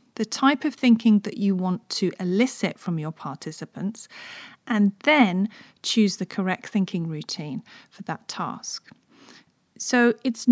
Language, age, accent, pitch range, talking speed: English, 40-59, British, 190-250 Hz, 135 wpm